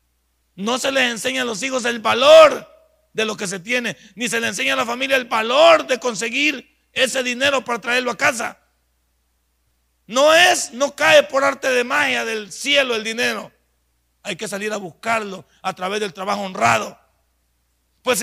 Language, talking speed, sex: Spanish, 180 wpm, male